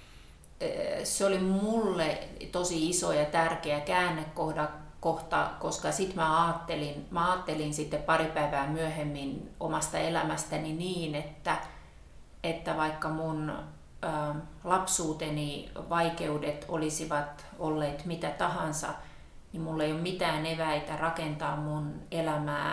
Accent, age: native, 30-49